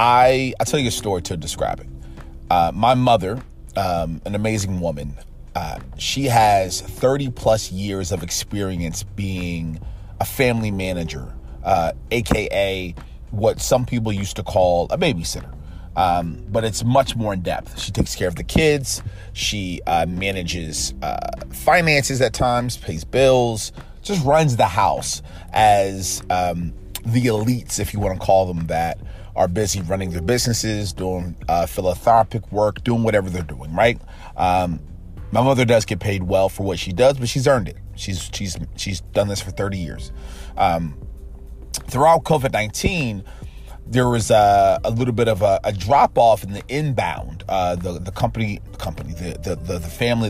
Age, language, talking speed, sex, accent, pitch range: 30-49, English, 165 wpm, male, American, 90-115 Hz